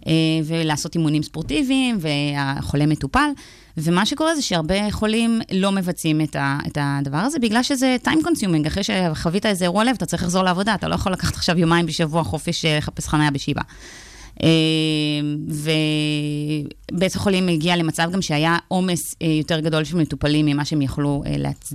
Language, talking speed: Hebrew, 145 wpm